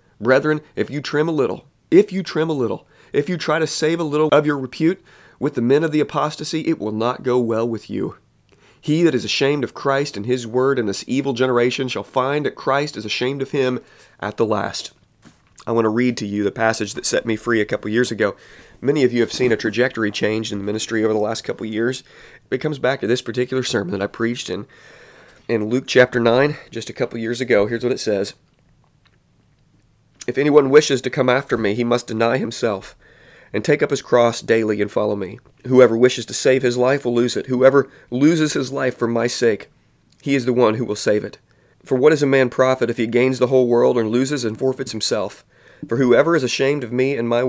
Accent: American